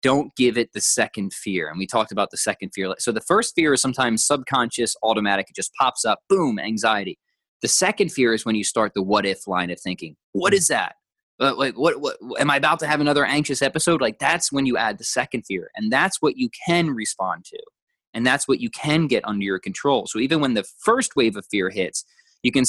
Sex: male